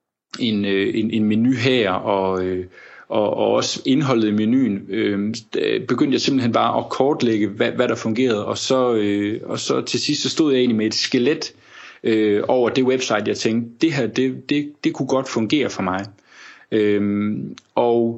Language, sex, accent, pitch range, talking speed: Danish, male, native, 105-125 Hz, 160 wpm